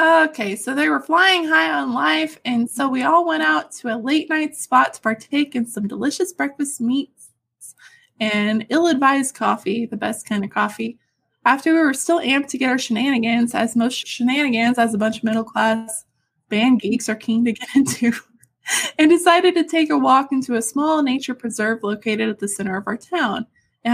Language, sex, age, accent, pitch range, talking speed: English, female, 20-39, American, 220-290 Hz, 190 wpm